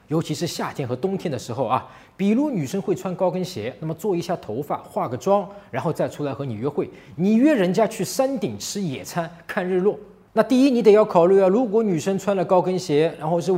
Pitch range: 145-195 Hz